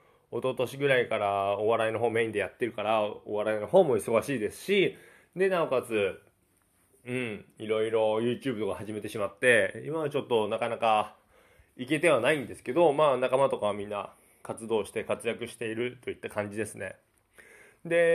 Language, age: Japanese, 20-39